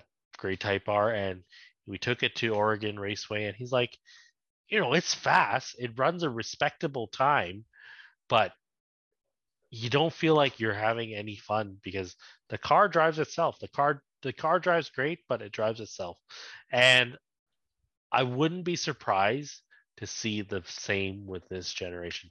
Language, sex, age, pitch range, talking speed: English, male, 30-49, 100-140 Hz, 155 wpm